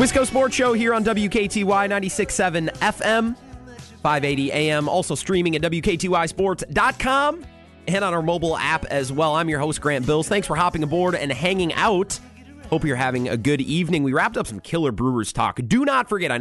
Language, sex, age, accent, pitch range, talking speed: English, male, 30-49, American, 135-205 Hz, 185 wpm